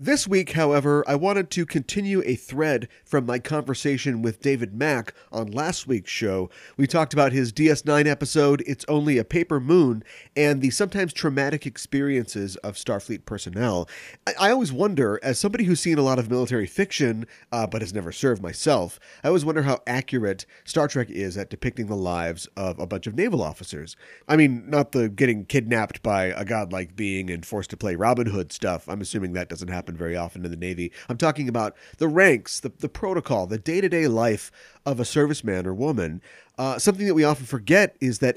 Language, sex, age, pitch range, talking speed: English, male, 30-49, 100-150 Hz, 195 wpm